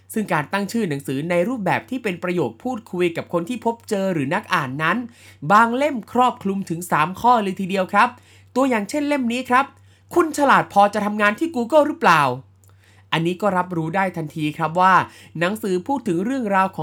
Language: Thai